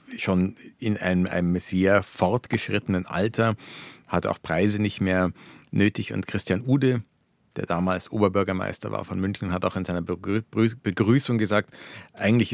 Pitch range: 95-110 Hz